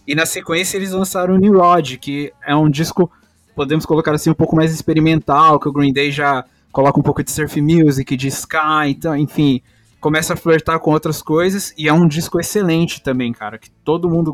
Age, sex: 20-39, male